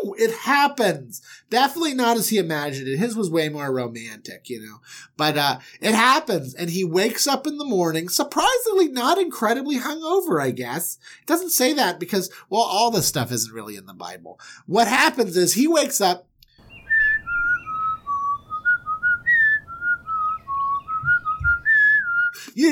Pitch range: 145-240 Hz